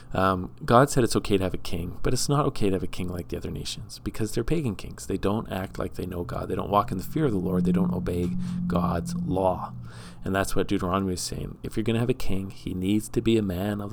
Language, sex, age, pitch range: English, male, 40-59, 95-115 Hz